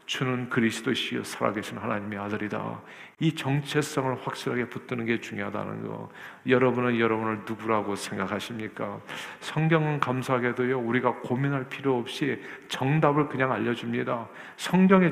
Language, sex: Korean, male